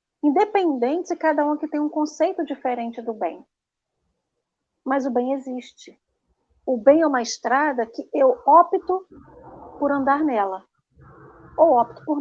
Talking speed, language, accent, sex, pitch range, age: 145 wpm, Portuguese, Brazilian, female, 235-315 Hz, 40-59